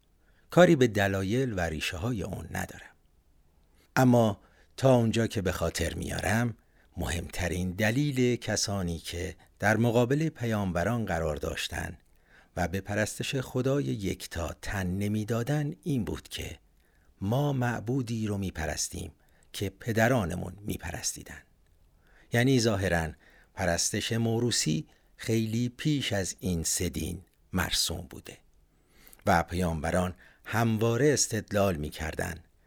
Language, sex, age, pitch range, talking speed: Persian, male, 60-79, 80-115 Hz, 105 wpm